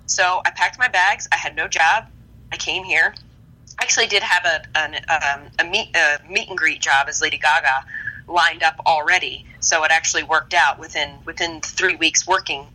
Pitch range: 145-165 Hz